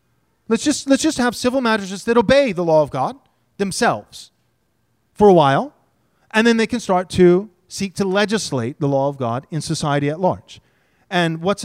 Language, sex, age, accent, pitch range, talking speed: English, male, 30-49, American, 160-230 Hz, 185 wpm